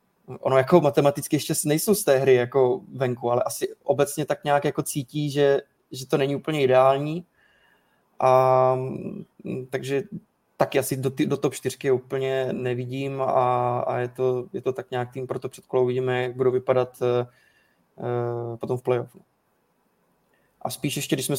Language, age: Czech, 20-39